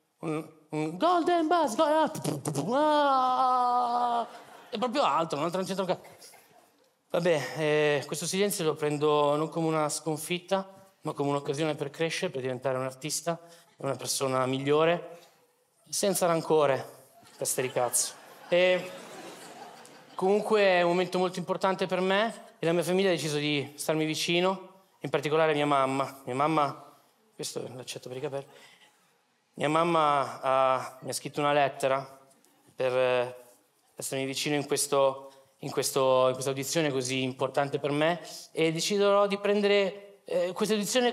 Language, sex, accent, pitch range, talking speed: Italian, male, native, 140-190 Hz, 140 wpm